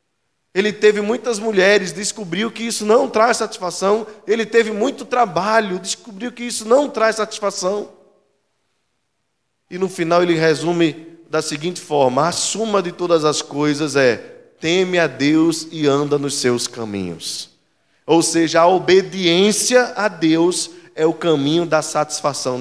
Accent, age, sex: Brazilian, 20-39, male